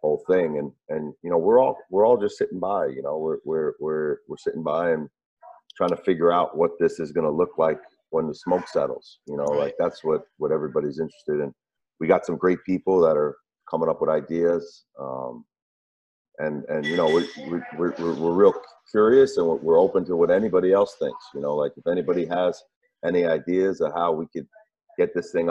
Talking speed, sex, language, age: 215 wpm, male, English, 40-59